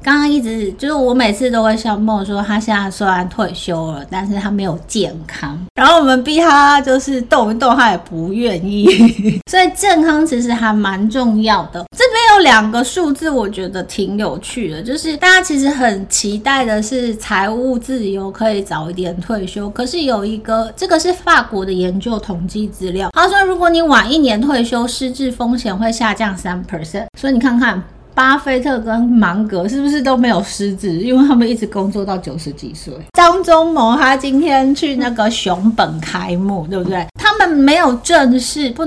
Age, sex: 30-49, female